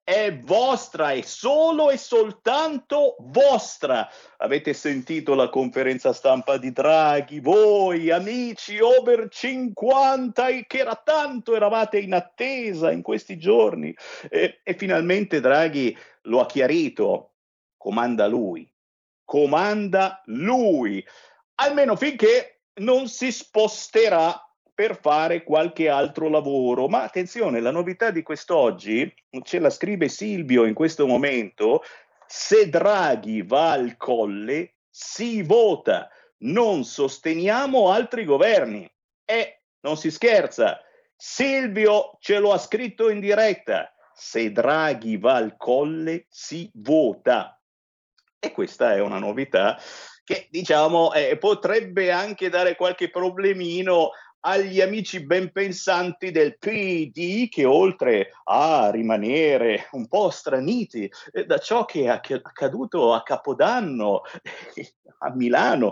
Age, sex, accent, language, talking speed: 50-69, male, native, Italian, 115 wpm